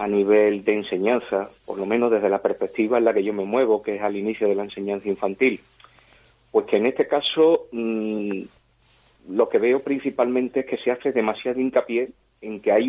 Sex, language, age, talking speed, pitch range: male, Spanish, 40-59, 195 wpm, 105-130 Hz